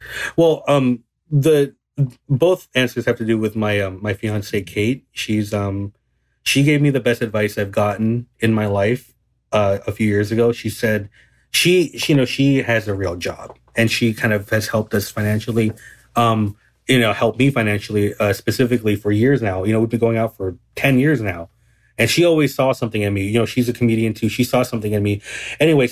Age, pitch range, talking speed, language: 30-49, 105-130 Hz, 210 wpm, English